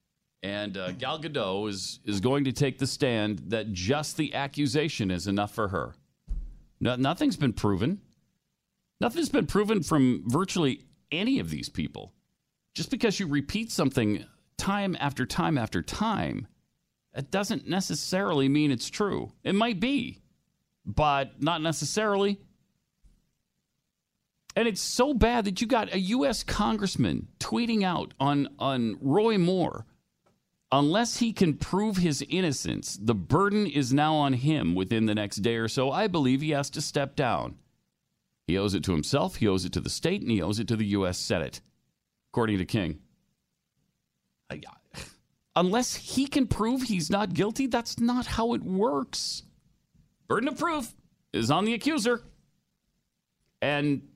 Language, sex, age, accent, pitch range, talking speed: English, male, 40-59, American, 125-215 Hz, 150 wpm